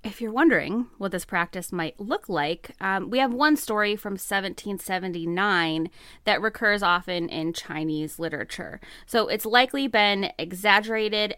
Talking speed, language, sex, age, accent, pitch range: 140 wpm, English, female, 20-39, American, 180-230 Hz